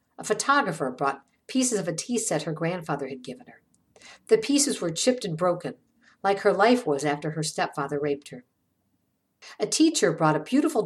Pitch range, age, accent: 150-225 Hz, 50-69, American